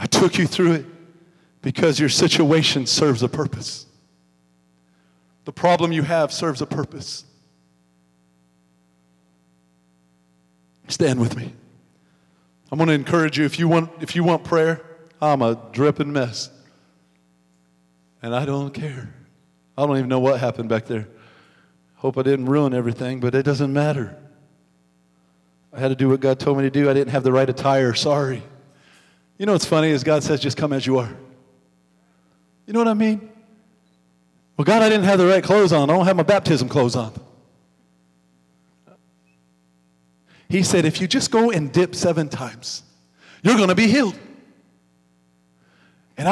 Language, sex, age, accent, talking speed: English, male, 40-59, American, 160 wpm